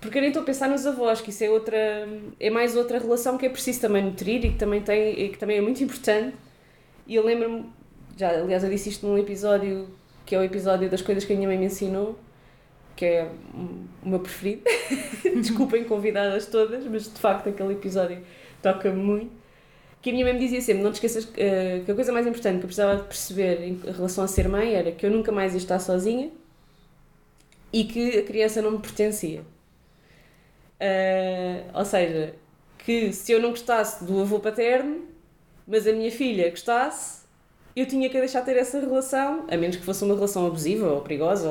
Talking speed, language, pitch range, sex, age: 200 wpm, Portuguese, 190-250 Hz, female, 20-39